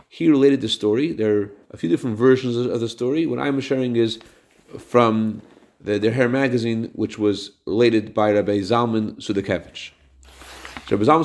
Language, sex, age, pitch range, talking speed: English, male, 40-59, 105-125 Hz, 160 wpm